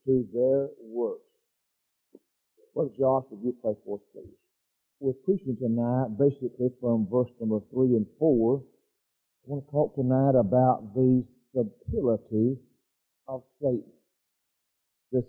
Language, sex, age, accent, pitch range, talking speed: English, male, 50-69, American, 125-150 Hz, 125 wpm